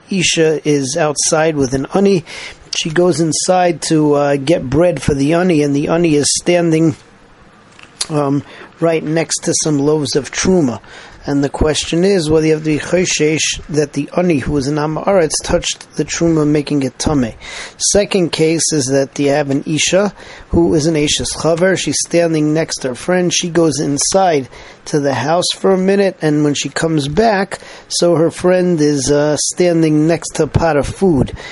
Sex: male